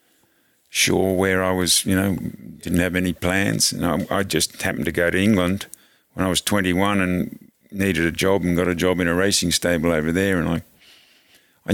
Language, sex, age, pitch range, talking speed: English, male, 50-69, 85-100 Hz, 205 wpm